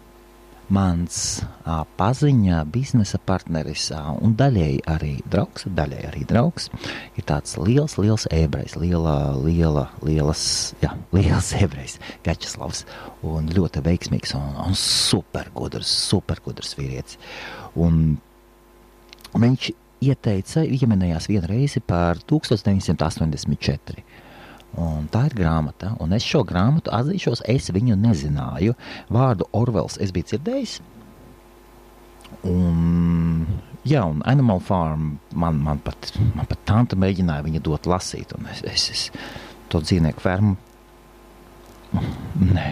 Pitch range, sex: 85-115 Hz, male